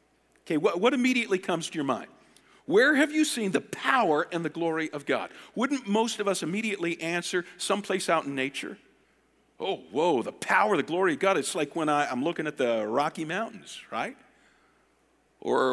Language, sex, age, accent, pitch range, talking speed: English, male, 50-69, American, 160-255 Hz, 185 wpm